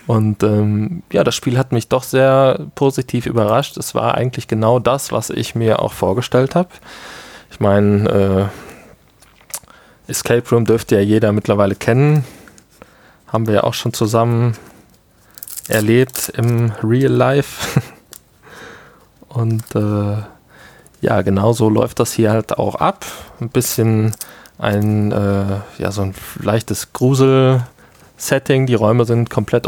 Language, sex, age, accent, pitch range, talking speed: German, male, 20-39, German, 110-130 Hz, 125 wpm